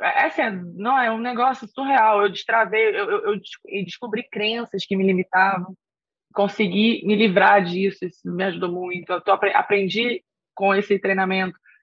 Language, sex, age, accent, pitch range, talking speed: Portuguese, female, 20-39, Brazilian, 190-240 Hz, 155 wpm